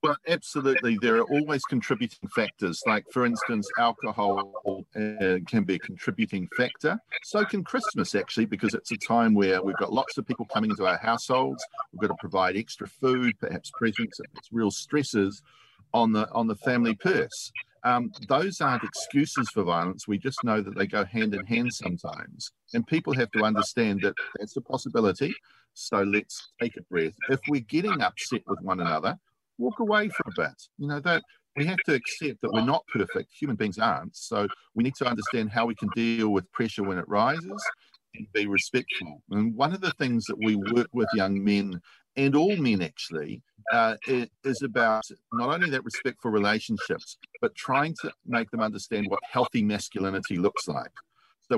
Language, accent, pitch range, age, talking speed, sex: English, Australian, 105-130 Hz, 50-69, 185 wpm, male